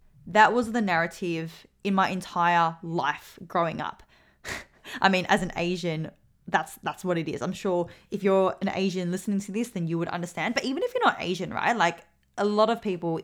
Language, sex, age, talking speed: English, female, 20-39, 205 wpm